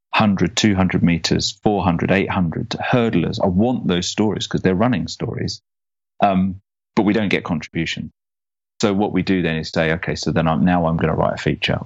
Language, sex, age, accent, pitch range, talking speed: English, male, 30-49, British, 80-95 Hz, 190 wpm